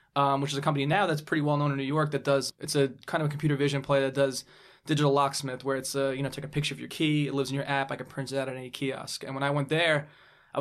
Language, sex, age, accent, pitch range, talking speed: English, male, 20-39, American, 135-145 Hz, 320 wpm